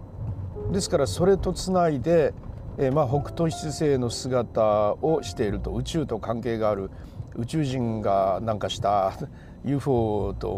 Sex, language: male, Japanese